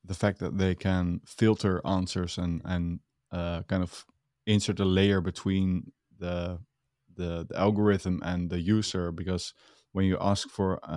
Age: 20-39